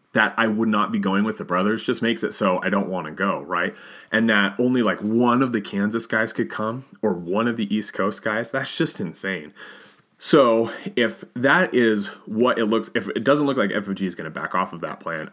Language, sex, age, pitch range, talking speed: English, male, 30-49, 95-120 Hz, 240 wpm